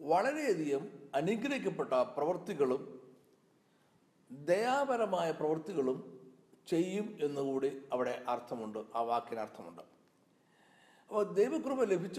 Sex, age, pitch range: male, 60-79, 130-190 Hz